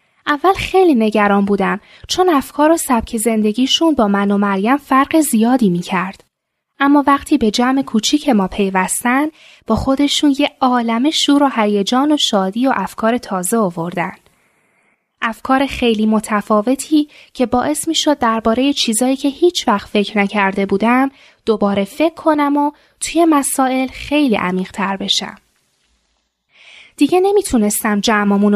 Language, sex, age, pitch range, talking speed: Persian, female, 10-29, 205-285 Hz, 130 wpm